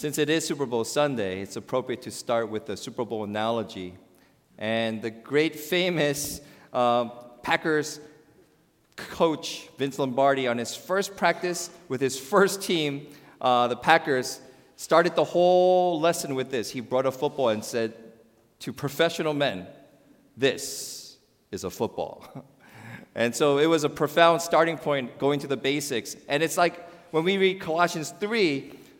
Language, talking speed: English, 155 wpm